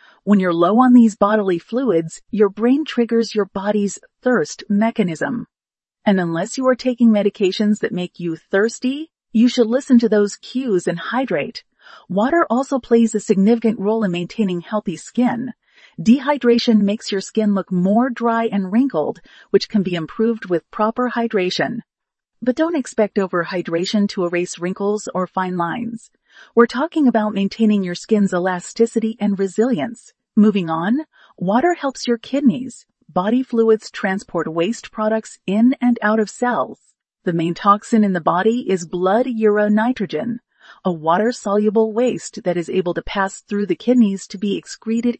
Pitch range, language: 195-240 Hz, English